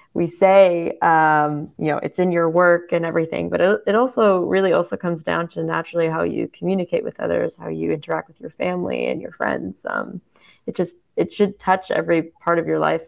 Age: 20-39